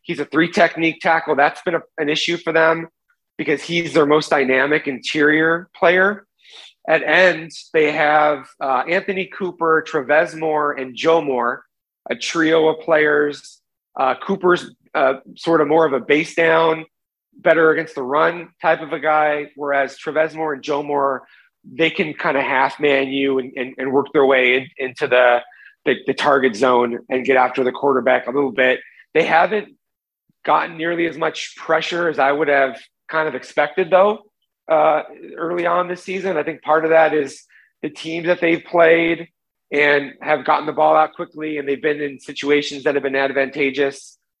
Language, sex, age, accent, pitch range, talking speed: English, male, 30-49, American, 140-165 Hz, 180 wpm